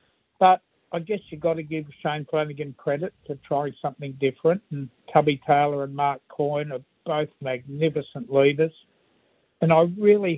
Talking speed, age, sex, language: 155 wpm, 60-79, male, English